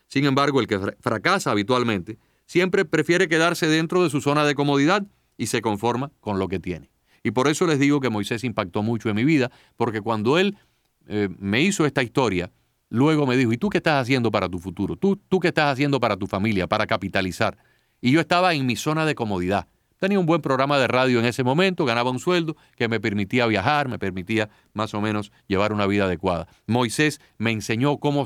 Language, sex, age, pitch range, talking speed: Spanish, male, 40-59, 110-145 Hz, 210 wpm